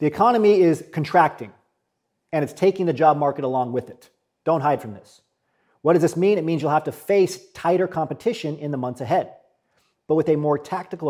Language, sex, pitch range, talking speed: English, male, 130-190 Hz, 205 wpm